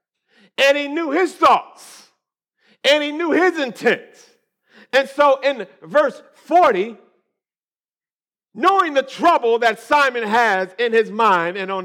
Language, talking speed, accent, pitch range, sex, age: English, 130 wpm, American, 195-300 Hz, male, 50-69